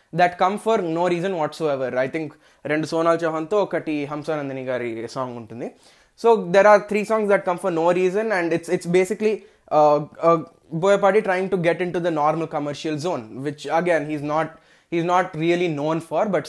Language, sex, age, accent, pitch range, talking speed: Telugu, male, 20-39, native, 155-205 Hz, 190 wpm